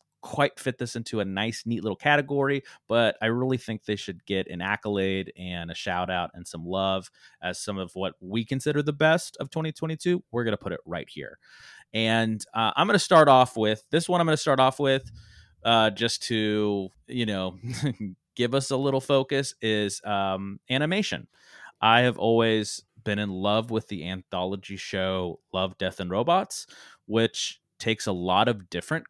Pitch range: 100-135 Hz